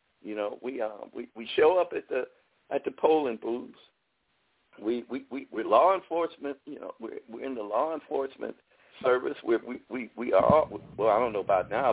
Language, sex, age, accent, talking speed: English, male, 60-79, American, 205 wpm